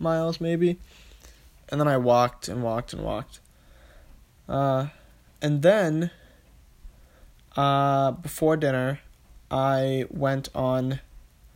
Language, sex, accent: English, male, American